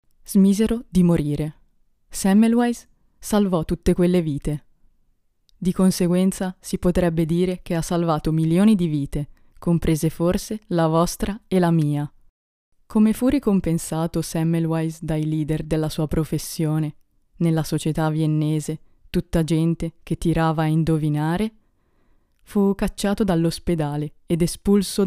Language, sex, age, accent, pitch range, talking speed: Italian, female, 20-39, native, 155-185 Hz, 115 wpm